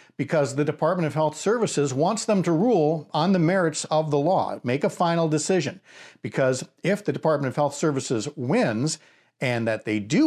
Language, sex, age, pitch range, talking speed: English, male, 50-69, 120-160 Hz, 185 wpm